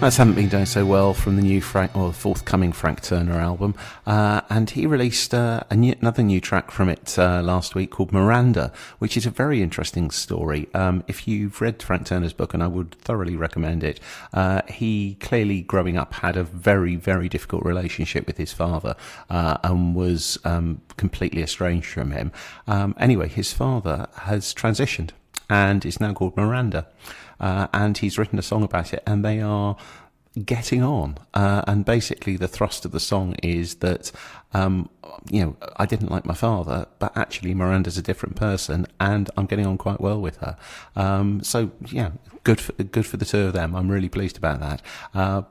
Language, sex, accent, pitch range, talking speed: English, male, British, 90-105 Hz, 195 wpm